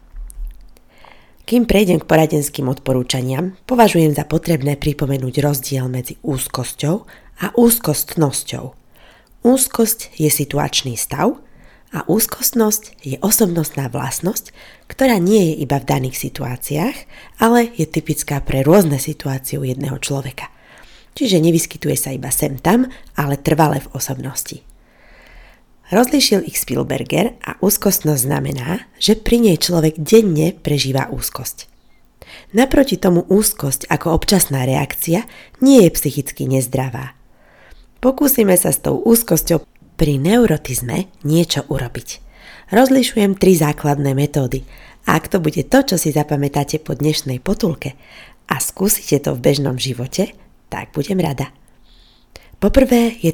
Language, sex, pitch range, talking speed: Slovak, female, 140-200 Hz, 120 wpm